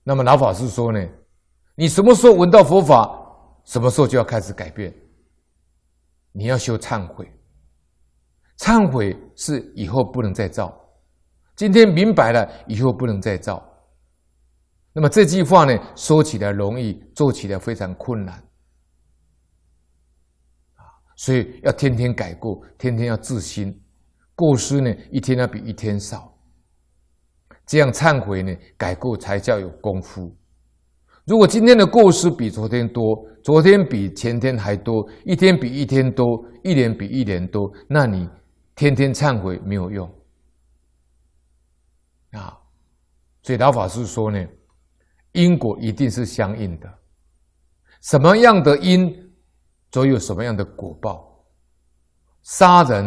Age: 60-79